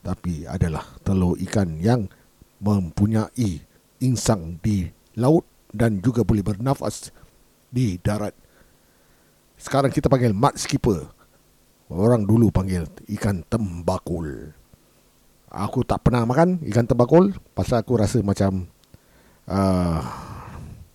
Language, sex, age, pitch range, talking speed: Malay, male, 50-69, 95-125 Hz, 100 wpm